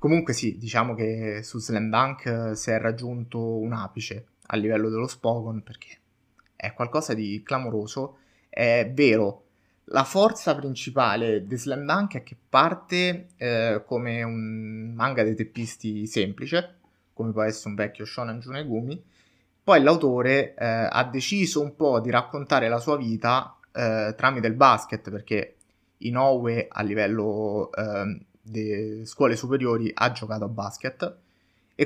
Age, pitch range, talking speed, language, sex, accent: 20-39, 110-130 Hz, 140 wpm, Italian, male, native